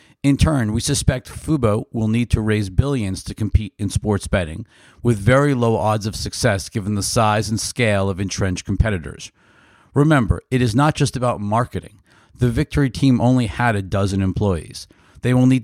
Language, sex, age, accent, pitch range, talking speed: English, male, 50-69, American, 100-125 Hz, 180 wpm